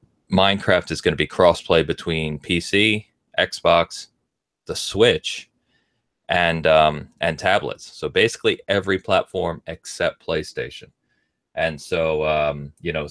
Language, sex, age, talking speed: English, male, 30-49, 120 wpm